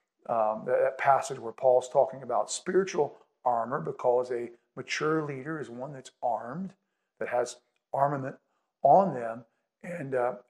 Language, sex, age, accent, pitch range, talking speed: English, male, 50-69, American, 140-195 Hz, 135 wpm